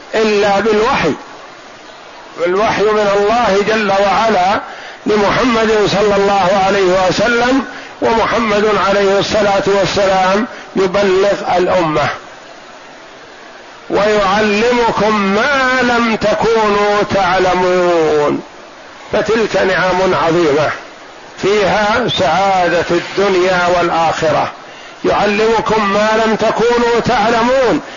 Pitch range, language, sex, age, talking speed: 195-235 Hz, Arabic, male, 50-69, 75 wpm